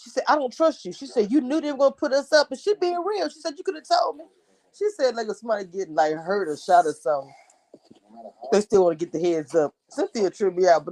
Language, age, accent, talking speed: English, 20-39, American, 280 wpm